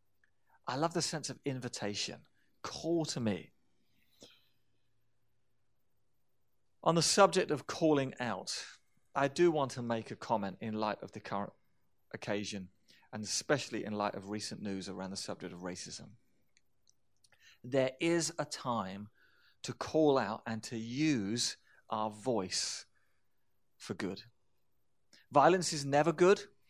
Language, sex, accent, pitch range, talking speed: English, male, British, 115-150 Hz, 130 wpm